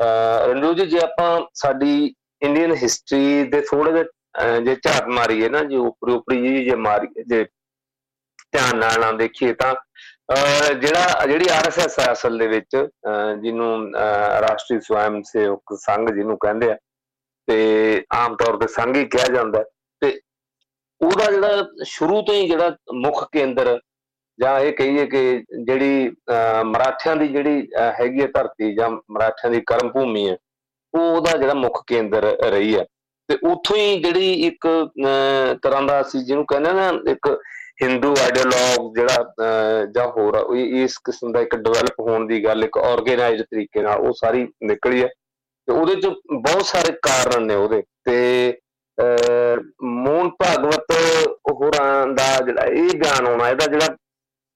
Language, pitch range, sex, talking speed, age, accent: English, 120-160 Hz, male, 65 wpm, 50-69, Indian